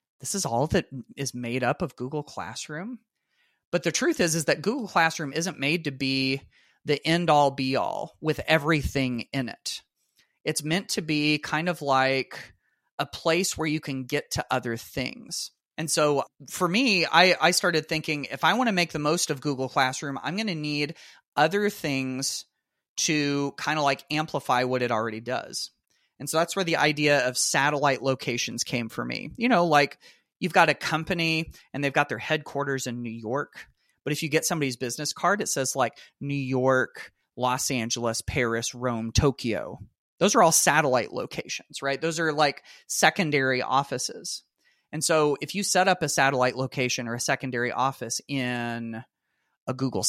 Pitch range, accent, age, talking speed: 130-165 Hz, American, 30-49, 180 wpm